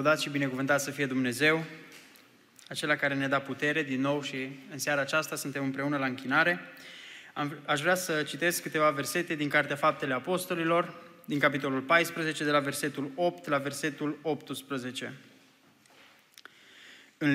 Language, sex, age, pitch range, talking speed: Romanian, male, 20-39, 140-170 Hz, 150 wpm